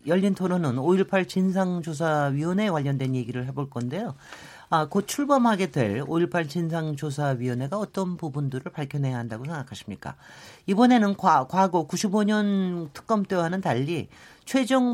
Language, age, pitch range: Korean, 40-59, 140-200 Hz